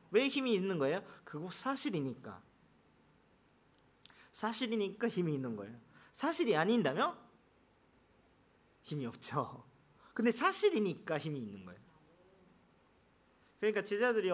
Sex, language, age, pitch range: male, Korean, 40-59, 140-220 Hz